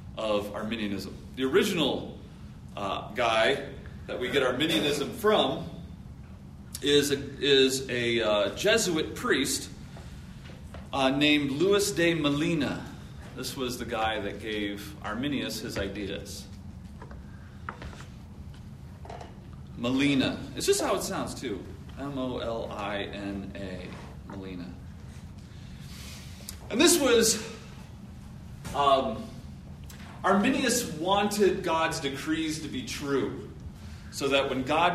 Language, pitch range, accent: English, 100-145 Hz, American